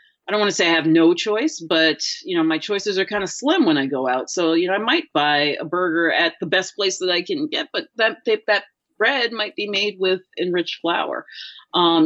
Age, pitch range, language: 30-49, 155-230 Hz, English